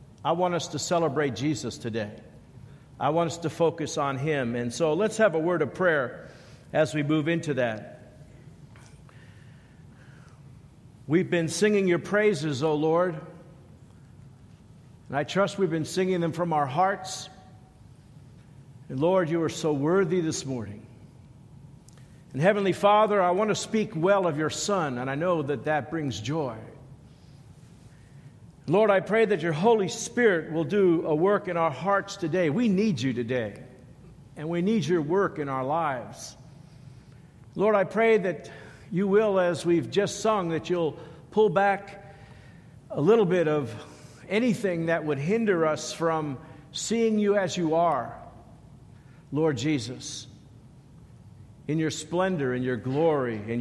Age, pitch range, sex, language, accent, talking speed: 50-69, 135-175 Hz, male, English, American, 150 wpm